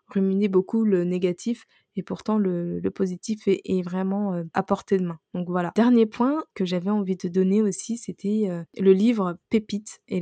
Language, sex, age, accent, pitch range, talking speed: French, female, 20-39, French, 180-215 Hz, 180 wpm